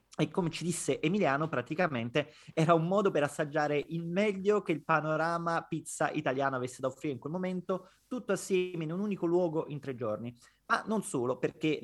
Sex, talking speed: male, 190 wpm